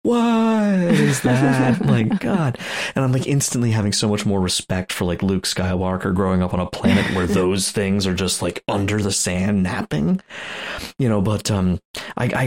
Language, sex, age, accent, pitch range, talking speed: English, male, 30-49, American, 90-105 Hz, 190 wpm